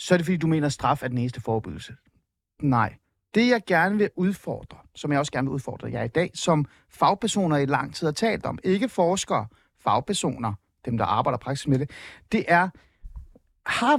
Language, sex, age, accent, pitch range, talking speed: Danish, male, 30-49, native, 130-195 Hz, 200 wpm